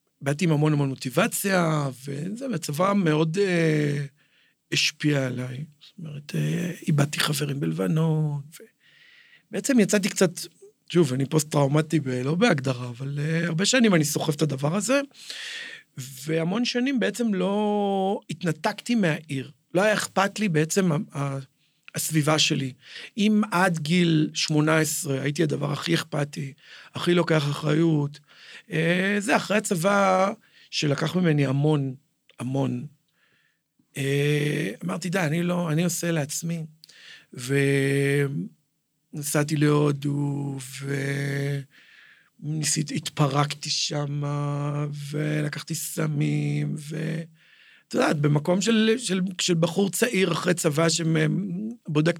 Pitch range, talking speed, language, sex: 145-185 Hz, 105 wpm, Hebrew, male